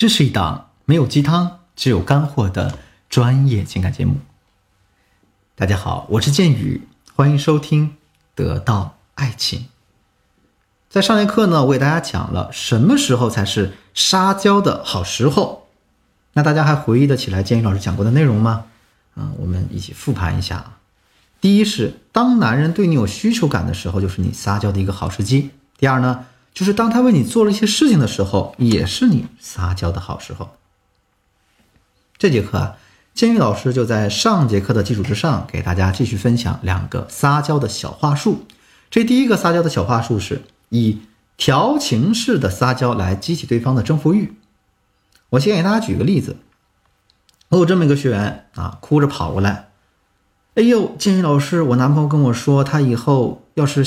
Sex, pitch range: male, 100-150 Hz